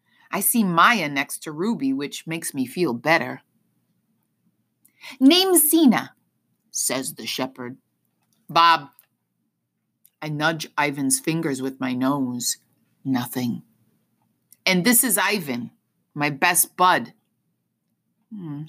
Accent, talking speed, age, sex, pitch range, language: American, 105 wpm, 30-49, female, 135-175 Hz, English